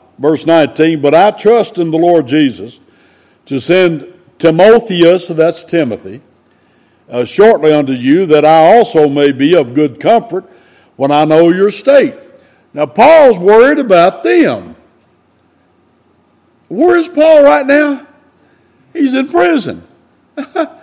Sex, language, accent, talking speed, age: male, English, American, 125 wpm, 60-79